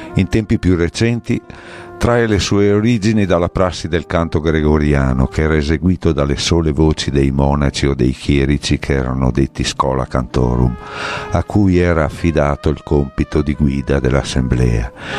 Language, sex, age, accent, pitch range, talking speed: Italian, male, 50-69, native, 70-90 Hz, 150 wpm